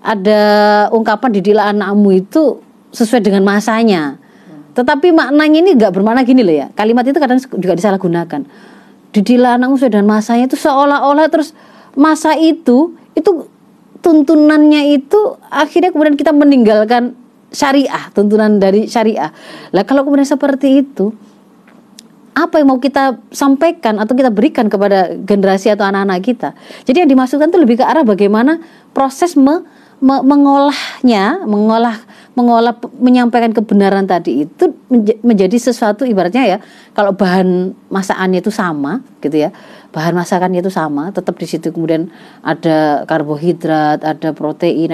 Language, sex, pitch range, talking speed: Indonesian, female, 195-275 Hz, 135 wpm